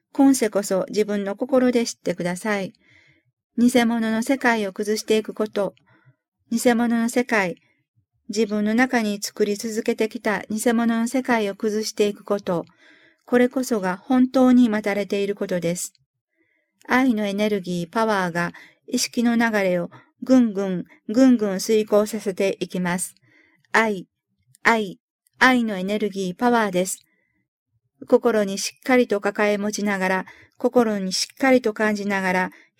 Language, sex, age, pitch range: Japanese, female, 50-69, 190-235 Hz